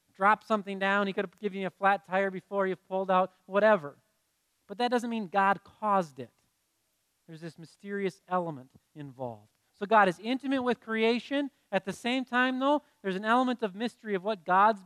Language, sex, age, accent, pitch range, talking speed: English, male, 40-59, American, 165-205 Hz, 190 wpm